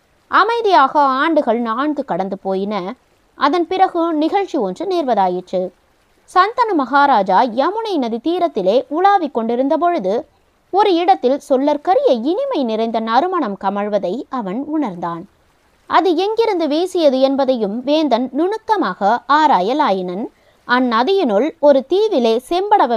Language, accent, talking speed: Tamil, native, 100 wpm